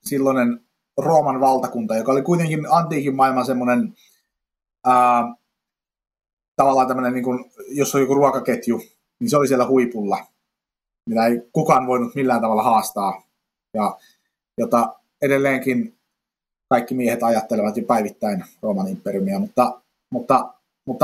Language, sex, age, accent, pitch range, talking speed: Finnish, male, 30-49, native, 125-160 Hz, 110 wpm